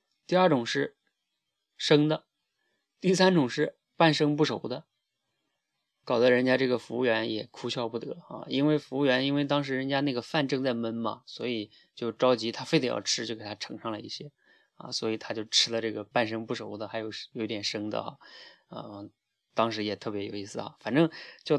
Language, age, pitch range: Chinese, 20-39, 110-140 Hz